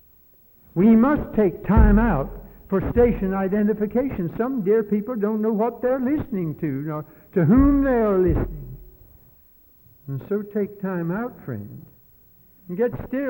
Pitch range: 140-190 Hz